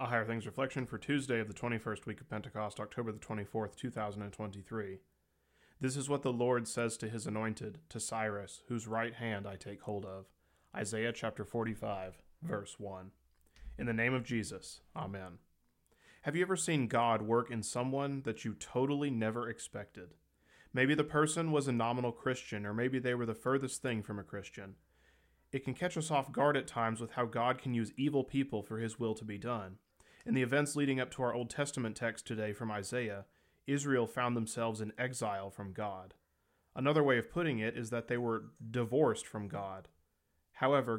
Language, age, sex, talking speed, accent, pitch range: English, 30-49, male, 190 wpm, American, 105-130 Hz